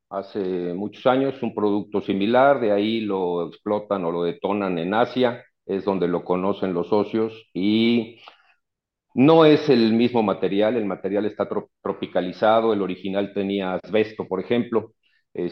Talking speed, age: 150 wpm, 50-69